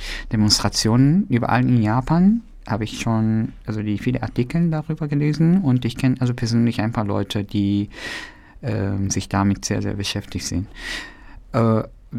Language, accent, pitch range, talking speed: German, German, 95-125 Hz, 150 wpm